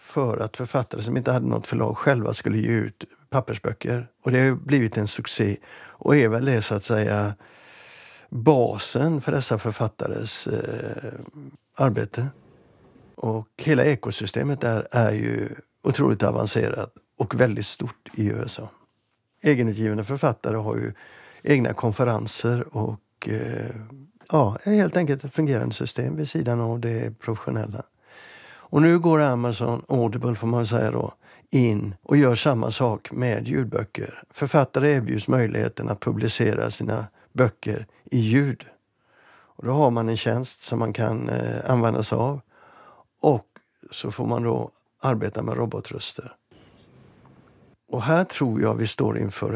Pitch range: 110-140 Hz